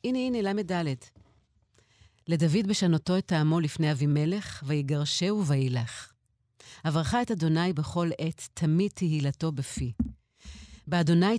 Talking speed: 115 wpm